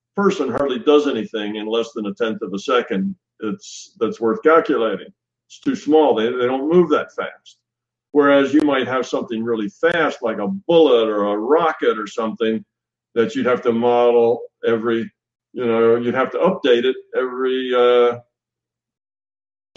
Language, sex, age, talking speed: English, male, 50-69, 165 wpm